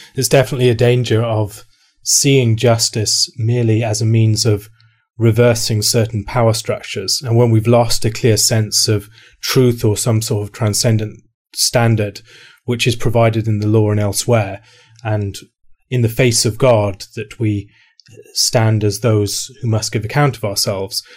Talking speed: 160 wpm